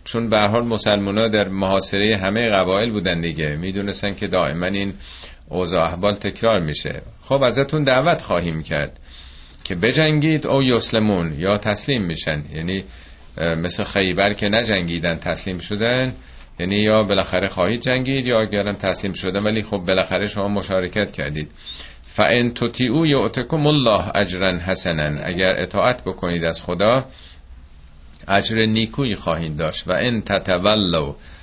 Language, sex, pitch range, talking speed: Persian, male, 80-110 Hz, 135 wpm